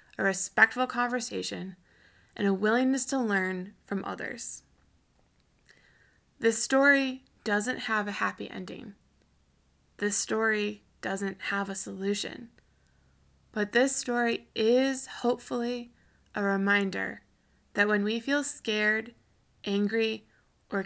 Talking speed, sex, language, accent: 105 wpm, female, English, American